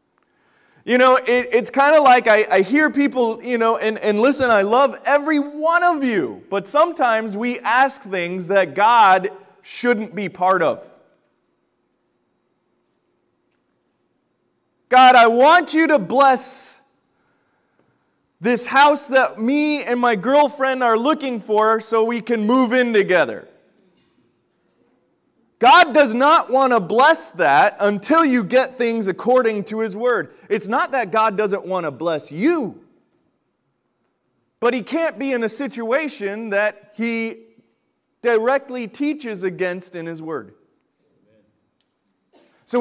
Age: 30-49